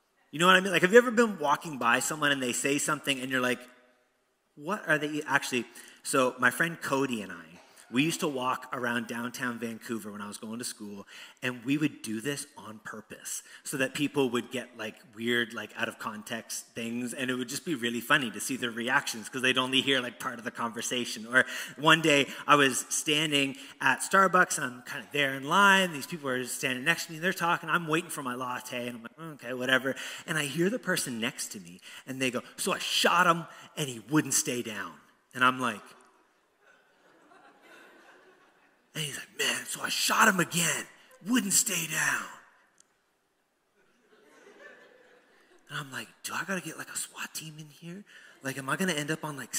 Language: English